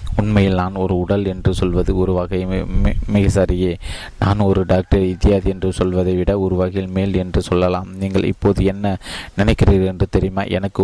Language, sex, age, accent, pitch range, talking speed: Tamil, male, 20-39, native, 95-100 Hz, 160 wpm